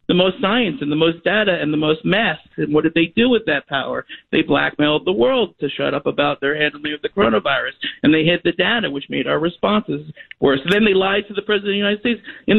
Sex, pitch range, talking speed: male, 150-205 Hz, 255 wpm